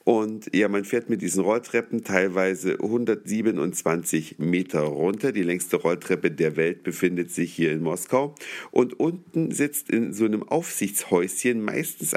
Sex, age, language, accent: male, 50-69, German, German